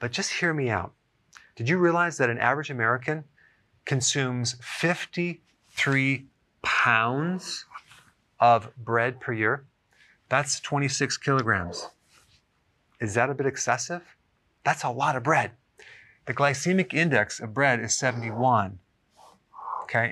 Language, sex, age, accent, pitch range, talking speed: English, male, 40-59, American, 110-140 Hz, 120 wpm